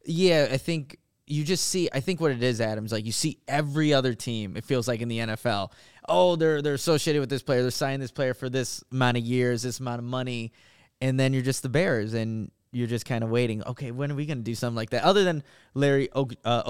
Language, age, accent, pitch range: English, 20-39, American, 120-145 Hz